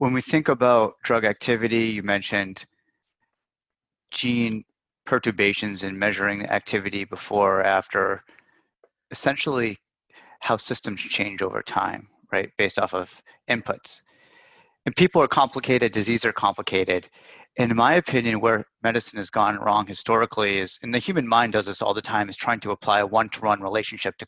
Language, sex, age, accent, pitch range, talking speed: English, male, 30-49, American, 105-125 Hz, 155 wpm